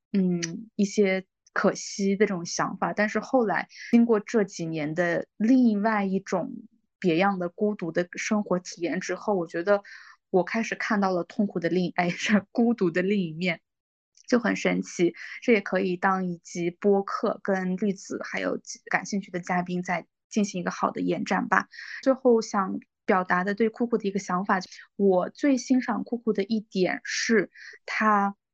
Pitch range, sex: 180-220 Hz, female